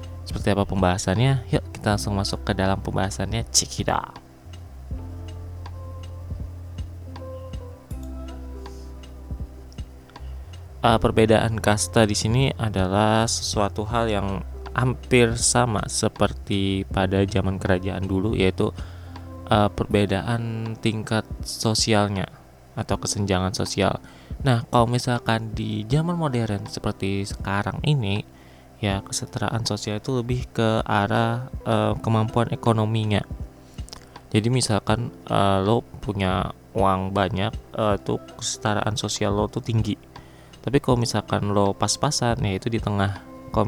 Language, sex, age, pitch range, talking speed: Indonesian, male, 20-39, 90-110 Hz, 105 wpm